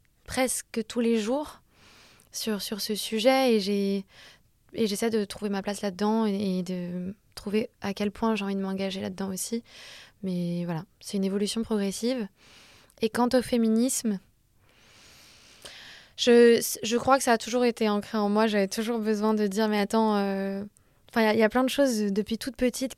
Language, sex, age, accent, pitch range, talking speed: French, female, 20-39, French, 205-240 Hz, 185 wpm